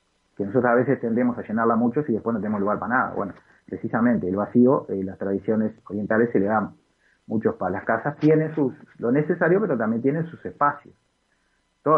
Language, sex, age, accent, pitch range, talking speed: Spanish, male, 30-49, Argentinian, 110-140 Hz, 195 wpm